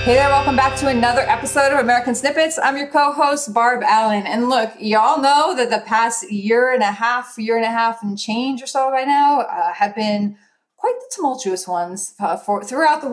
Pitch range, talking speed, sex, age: 210-255 Hz, 210 wpm, female, 30-49